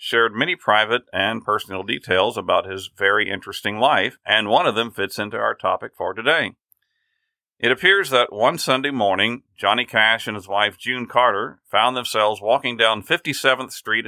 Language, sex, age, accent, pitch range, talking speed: English, male, 50-69, American, 110-150 Hz, 170 wpm